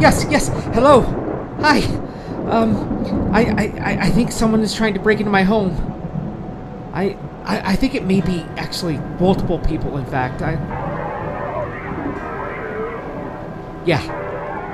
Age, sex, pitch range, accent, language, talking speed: 40-59, male, 160-205 Hz, American, English, 125 wpm